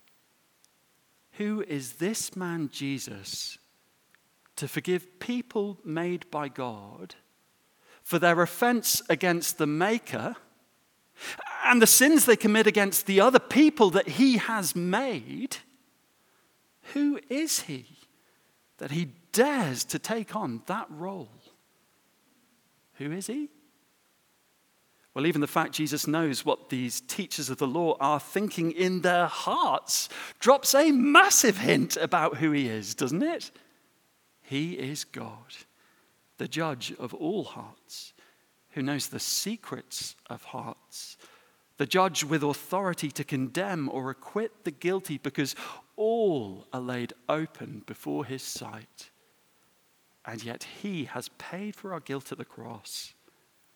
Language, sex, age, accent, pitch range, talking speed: English, male, 40-59, British, 145-215 Hz, 125 wpm